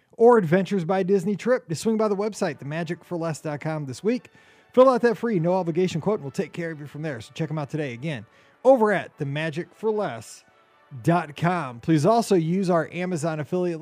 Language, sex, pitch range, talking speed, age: English, male, 145-190 Hz, 185 wpm, 30-49